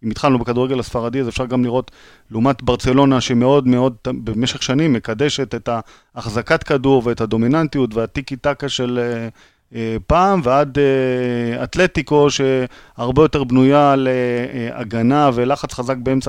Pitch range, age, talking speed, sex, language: 120-145 Hz, 30-49, 125 wpm, male, Hebrew